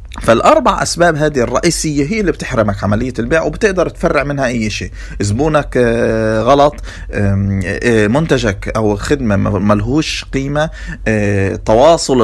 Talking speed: 110 wpm